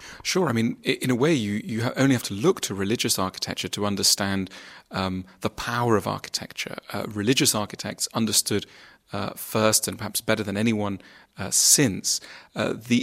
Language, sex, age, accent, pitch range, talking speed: English, male, 30-49, British, 100-120 Hz, 170 wpm